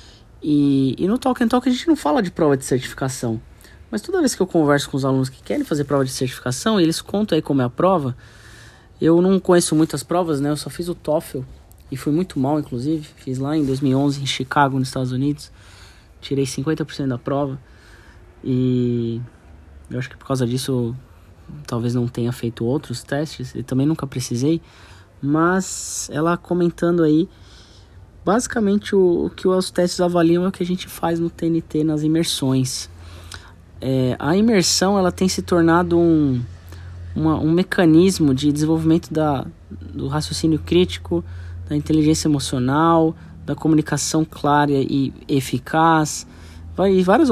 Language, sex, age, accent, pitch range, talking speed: Portuguese, male, 20-39, Brazilian, 120-165 Hz, 160 wpm